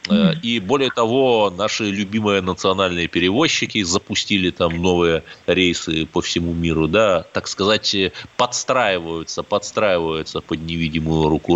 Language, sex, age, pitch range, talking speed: Russian, male, 20-39, 85-110 Hz, 115 wpm